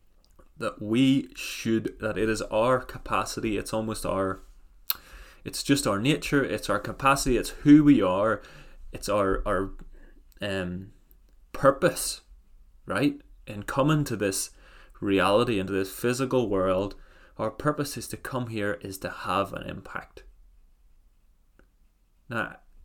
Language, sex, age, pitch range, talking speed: English, male, 20-39, 95-115 Hz, 130 wpm